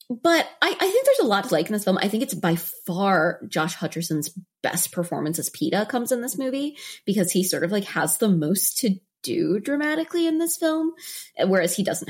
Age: 20-39